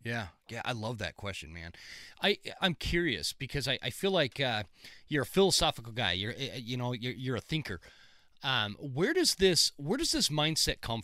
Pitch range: 125-160 Hz